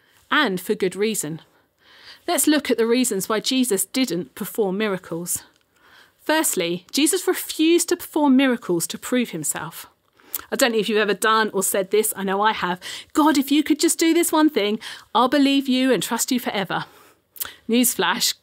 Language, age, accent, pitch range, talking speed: English, 40-59, British, 200-265 Hz, 175 wpm